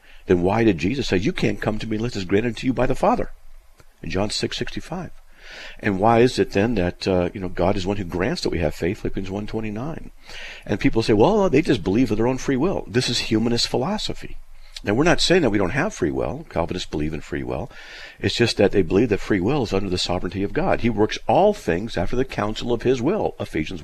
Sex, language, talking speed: male, English, 255 wpm